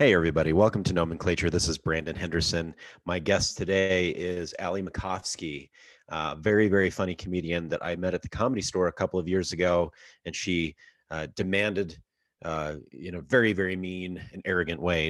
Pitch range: 80-95 Hz